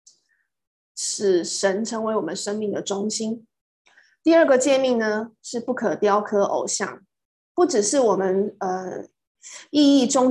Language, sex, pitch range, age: Chinese, female, 200-245 Hz, 20-39